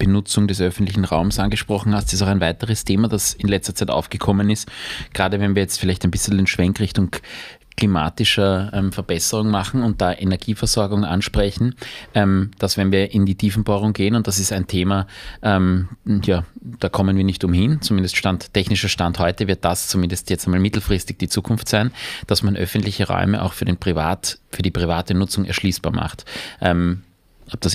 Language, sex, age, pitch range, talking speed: German, male, 20-39, 90-105 Hz, 190 wpm